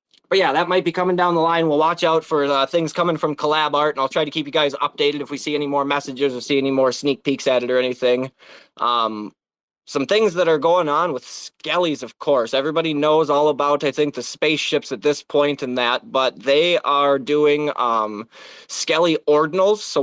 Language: English